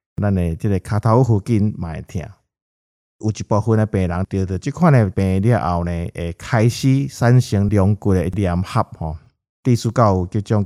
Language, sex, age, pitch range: Chinese, male, 50-69, 90-120 Hz